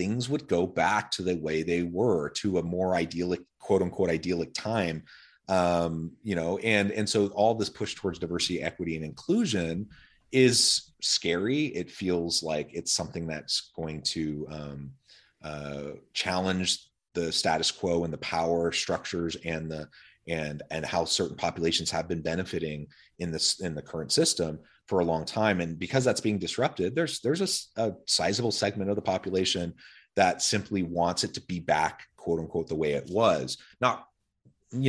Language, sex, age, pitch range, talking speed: English, male, 30-49, 80-105 Hz, 170 wpm